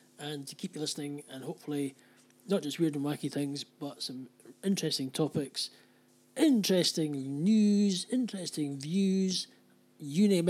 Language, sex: English, male